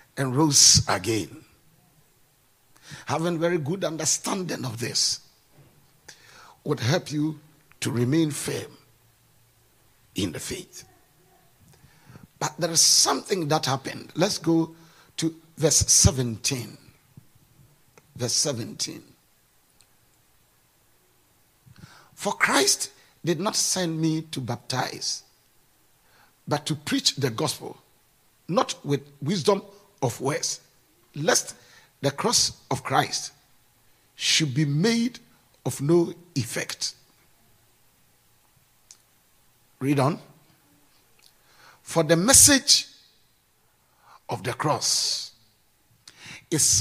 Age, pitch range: 50-69, 135-175 Hz